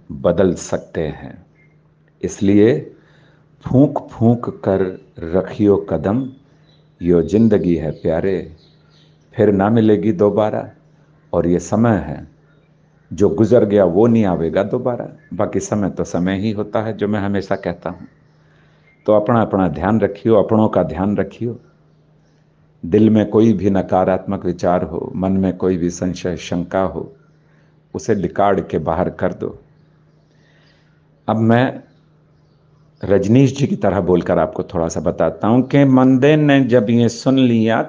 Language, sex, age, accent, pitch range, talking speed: Hindi, male, 50-69, native, 95-145 Hz, 140 wpm